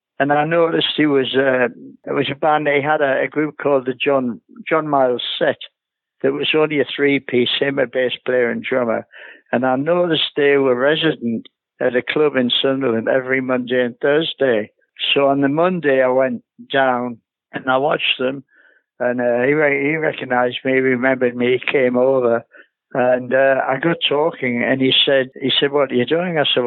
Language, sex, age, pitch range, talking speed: English, male, 60-79, 125-150 Hz, 195 wpm